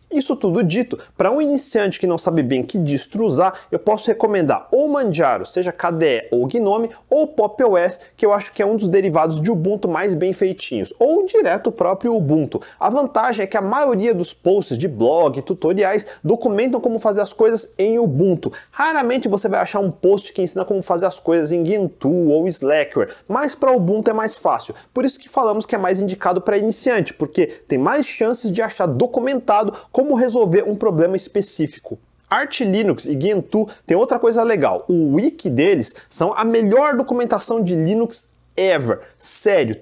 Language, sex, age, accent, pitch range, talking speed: Portuguese, male, 30-49, Brazilian, 185-235 Hz, 190 wpm